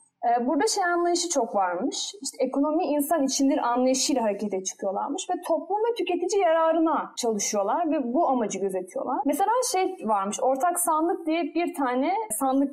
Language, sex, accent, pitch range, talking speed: Turkish, female, native, 245-335 Hz, 145 wpm